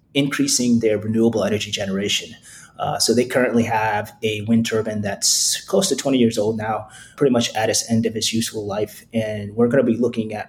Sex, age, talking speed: male, 30-49, 205 wpm